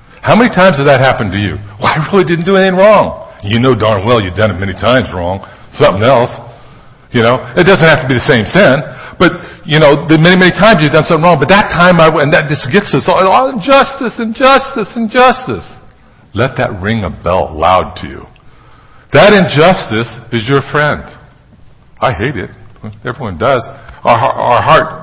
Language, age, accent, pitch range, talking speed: English, 60-79, American, 105-150 Hz, 205 wpm